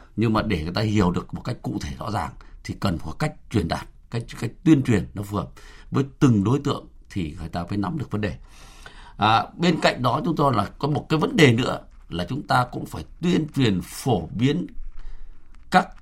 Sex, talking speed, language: male, 230 wpm, Vietnamese